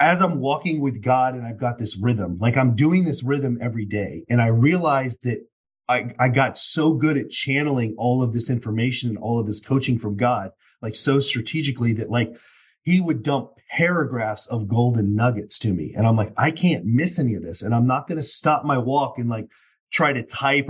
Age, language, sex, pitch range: 30-49, English, male, 115-140 Hz